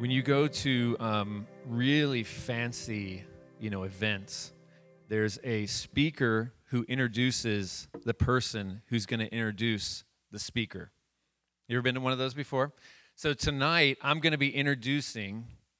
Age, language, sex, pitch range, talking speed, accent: 30-49, English, male, 110-135 Hz, 145 wpm, American